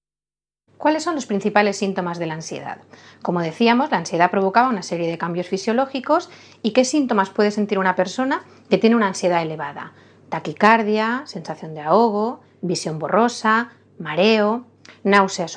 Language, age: Spanish, 30-49